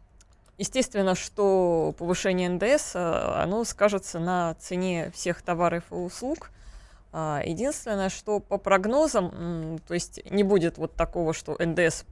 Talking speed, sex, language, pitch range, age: 120 wpm, female, Russian, 170-215 Hz, 20-39